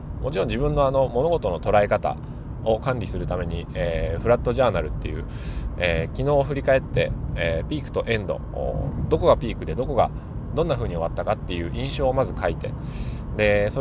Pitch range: 85-125 Hz